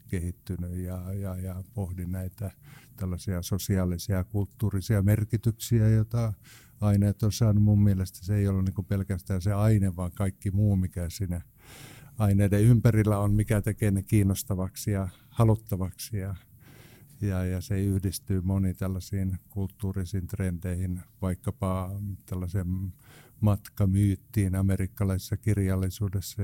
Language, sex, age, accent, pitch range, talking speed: Finnish, male, 50-69, native, 95-105 Hz, 120 wpm